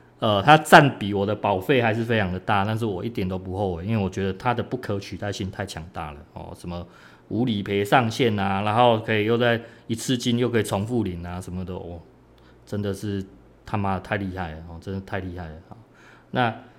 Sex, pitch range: male, 95-115 Hz